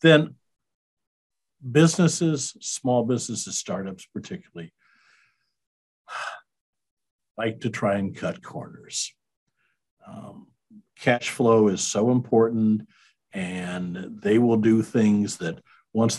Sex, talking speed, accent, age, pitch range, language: male, 95 wpm, American, 50-69, 110-155 Hz, English